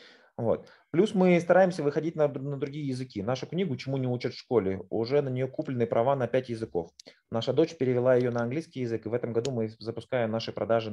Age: 30-49